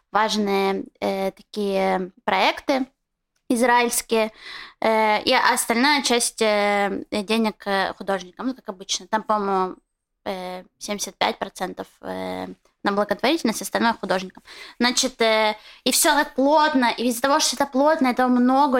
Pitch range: 220-260 Hz